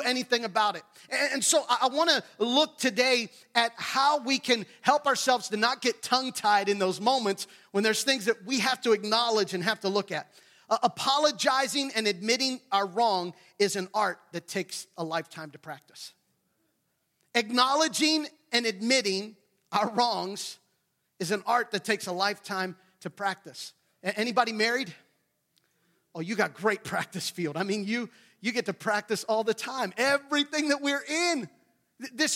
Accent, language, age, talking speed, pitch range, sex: American, English, 40-59, 165 wpm, 195-250 Hz, male